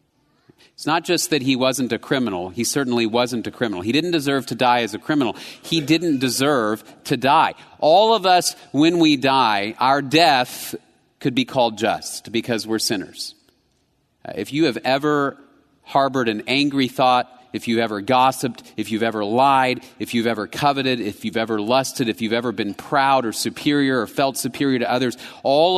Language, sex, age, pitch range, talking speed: English, male, 40-59, 120-165 Hz, 180 wpm